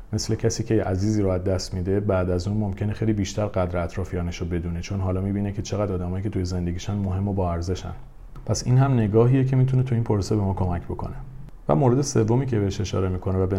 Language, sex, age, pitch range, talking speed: Persian, male, 40-59, 90-115 Hz, 230 wpm